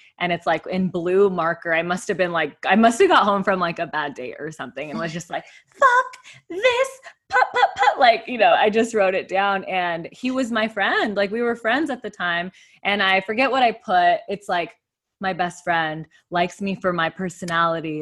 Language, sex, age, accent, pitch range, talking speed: English, female, 20-39, American, 170-210 Hz, 225 wpm